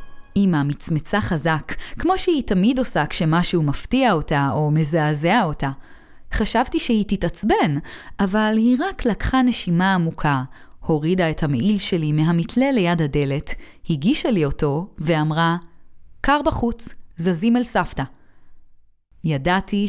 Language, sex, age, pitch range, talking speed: Hebrew, female, 20-39, 155-230 Hz, 120 wpm